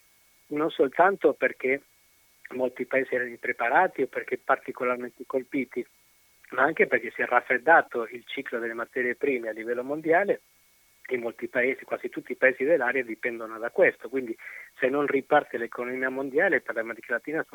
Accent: native